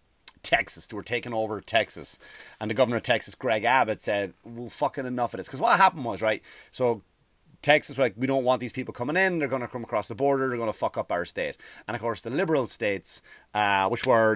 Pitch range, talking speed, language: 100-145 Hz, 240 wpm, English